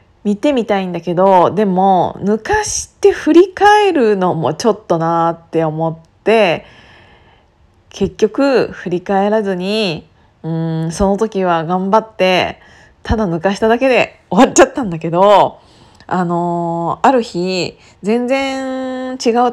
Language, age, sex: Japanese, 20-39, female